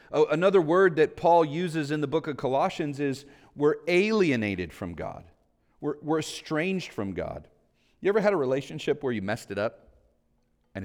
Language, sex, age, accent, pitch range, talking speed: English, male, 40-59, American, 100-155 Hz, 170 wpm